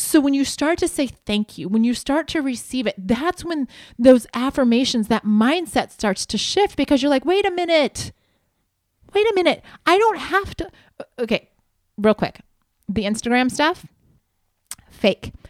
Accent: American